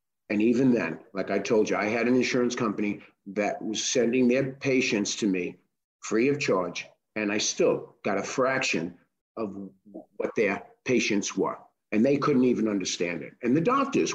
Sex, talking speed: male, 180 wpm